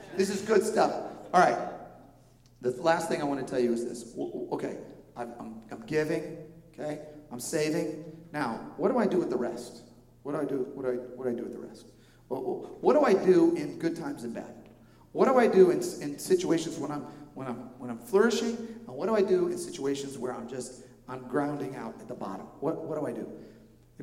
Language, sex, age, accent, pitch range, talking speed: English, male, 40-59, American, 130-195 Hz, 230 wpm